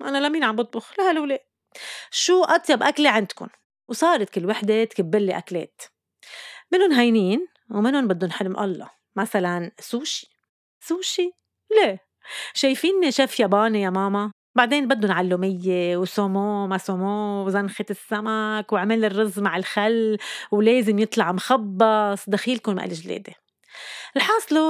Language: Arabic